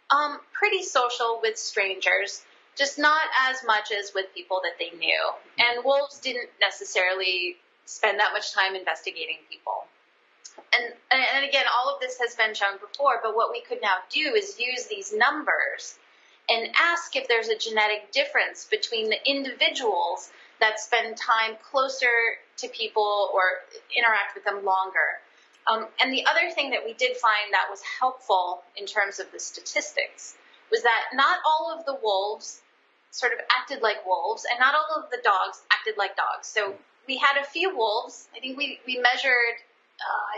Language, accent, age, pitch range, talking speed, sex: Swedish, American, 30-49, 215-295 Hz, 170 wpm, female